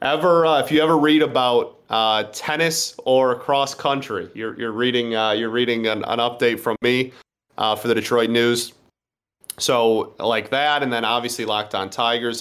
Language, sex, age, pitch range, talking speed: English, male, 30-49, 110-130 Hz, 180 wpm